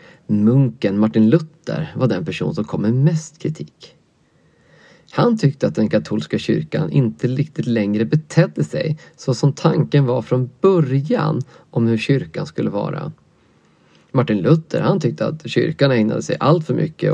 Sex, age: male, 30-49